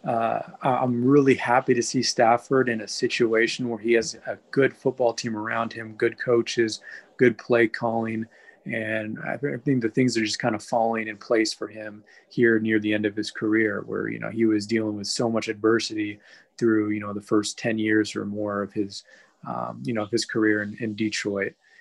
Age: 20-39